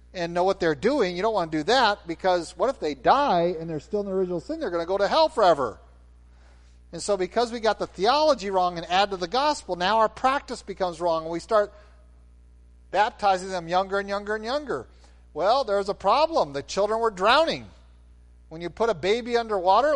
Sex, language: male, English